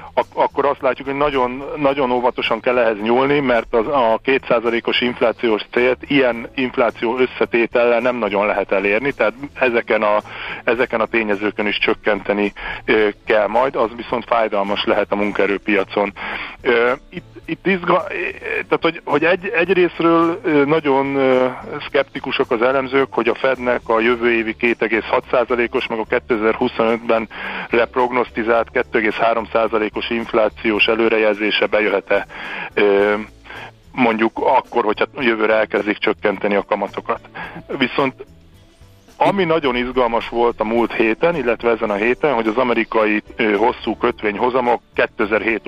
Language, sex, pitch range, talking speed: Hungarian, male, 110-130 Hz, 130 wpm